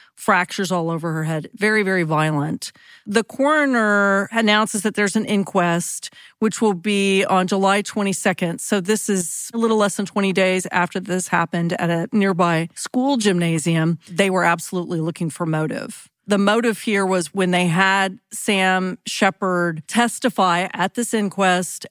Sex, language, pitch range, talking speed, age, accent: female, English, 175-215 Hz, 155 wpm, 40-59, American